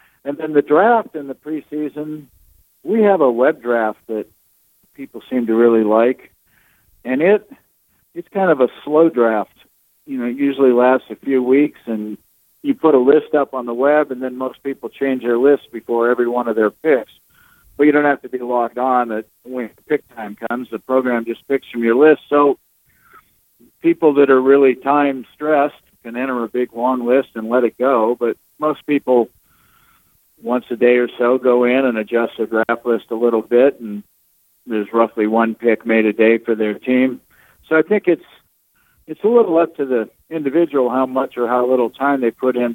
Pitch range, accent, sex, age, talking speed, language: 115-140 Hz, American, male, 50-69, 200 wpm, English